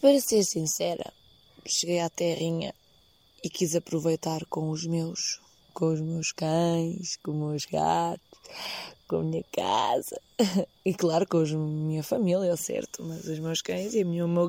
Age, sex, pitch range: 20-39, female, 160-185 Hz